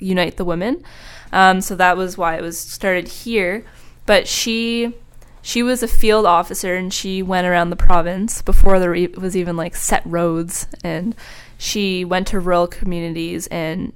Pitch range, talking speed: 175-195 Hz, 170 wpm